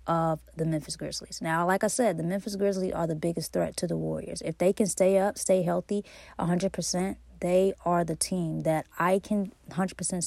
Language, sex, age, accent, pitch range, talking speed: English, female, 20-39, American, 160-185 Hz, 215 wpm